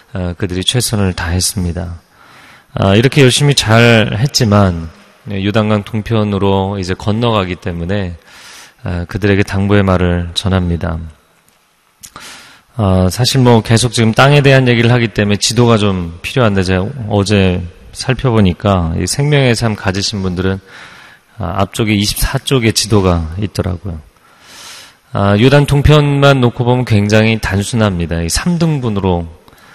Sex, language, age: male, Korean, 30-49